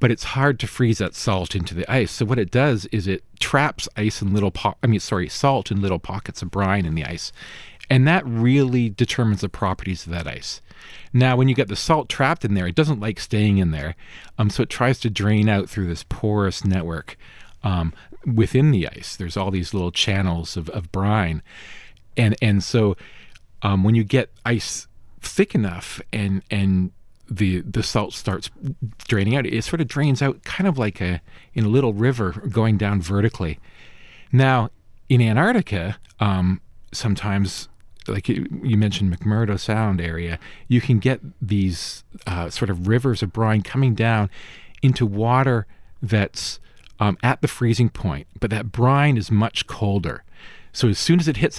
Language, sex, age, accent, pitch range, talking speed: English, male, 40-59, American, 95-125 Hz, 185 wpm